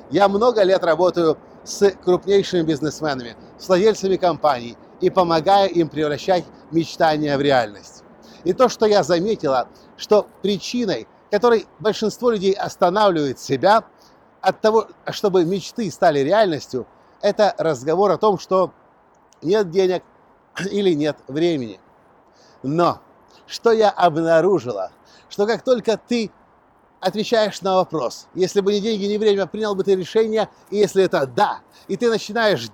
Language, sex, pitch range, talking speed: Russian, male, 155-210 Hz, 135 wpm